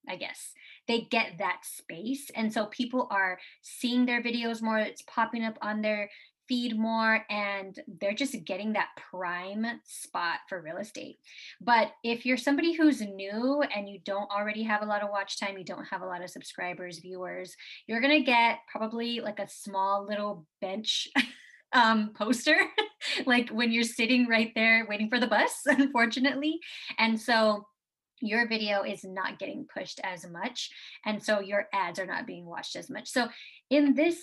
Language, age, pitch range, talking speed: English, 20-39, 200-250 Hz, 175 wpm